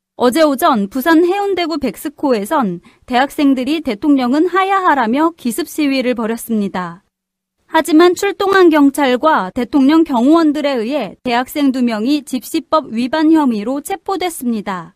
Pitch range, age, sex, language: 235-320 Hz, 30-49, female, Korean